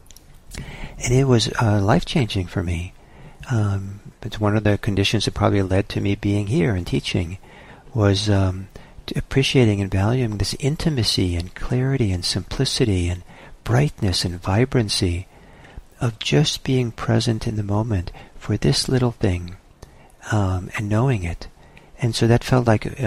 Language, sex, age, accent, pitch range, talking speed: English, male, 50-69, American, 95-125 Hz, 150 wpm